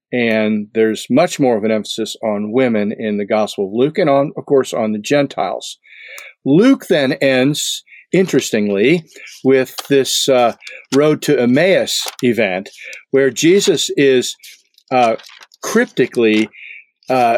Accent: American